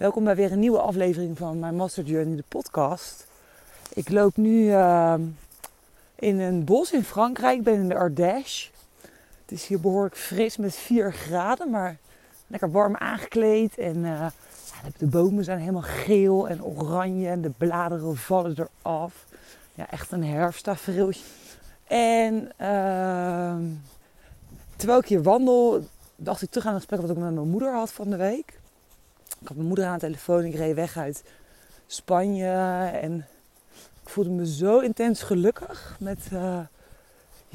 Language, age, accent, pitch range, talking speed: Dutch, 20-39, Dutch, 175-220 Hz, 160 wpm